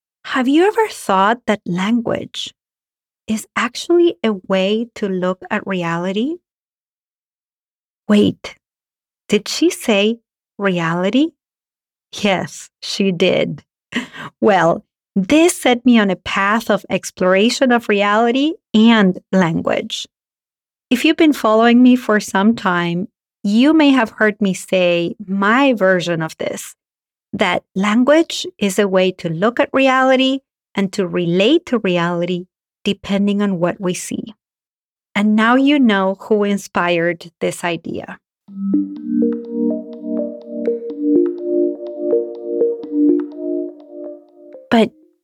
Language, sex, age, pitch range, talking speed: English, female, 30-49, 185-270 Hz, 105 wpm